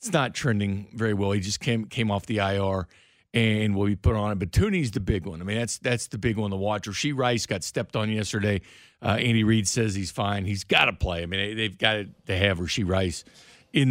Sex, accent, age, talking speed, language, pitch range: male, American, 50-69, 250 wpm, English, 105-145 Hz